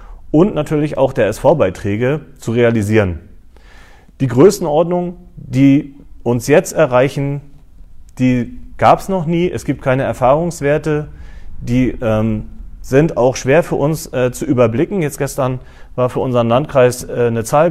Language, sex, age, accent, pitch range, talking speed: German, male, 40-59, German, 115-150 Hz, 140 wpm